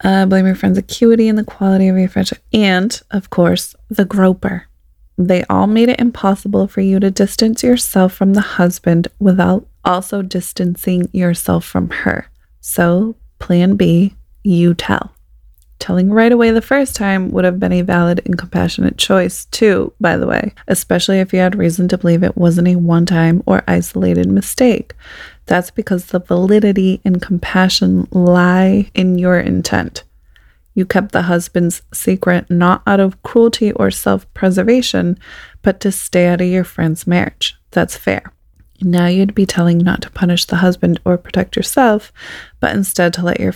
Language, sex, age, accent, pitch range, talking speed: English, female, 20-39, American, 175-195 Hz, 165 wpm